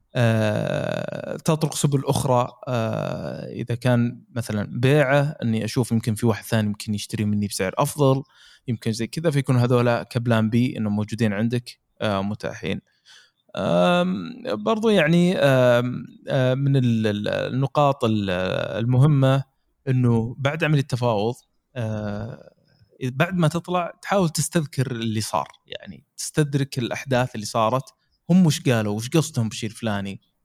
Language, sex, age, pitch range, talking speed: Arabic, male, 20-39, 115-145 Hz, 125 wpm